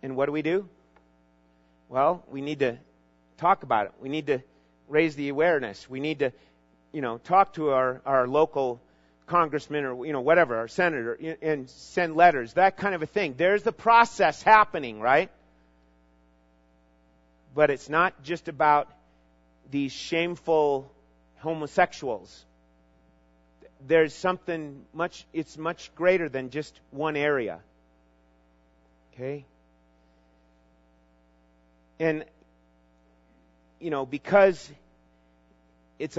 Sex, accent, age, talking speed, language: male, American, 40-59, 120 wpm, English